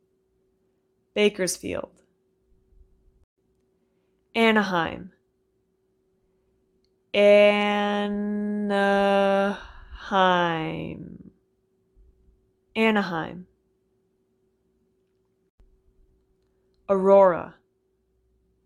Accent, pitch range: American, 185-205 Hz